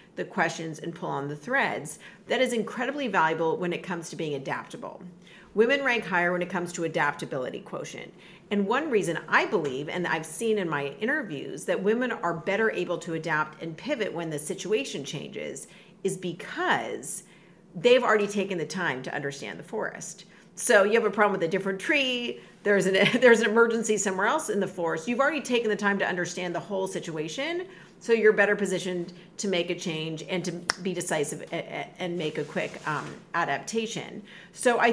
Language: English